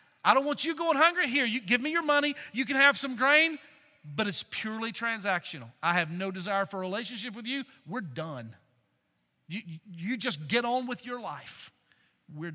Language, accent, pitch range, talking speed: English, American, 155-250 Hz, 195 wpm